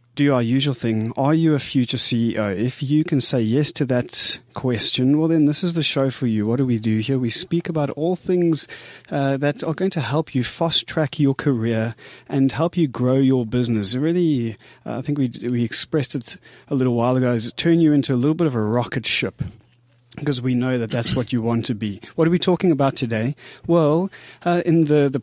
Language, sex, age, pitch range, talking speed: English, male, 30-49, 120-150 Hz, 225 wpm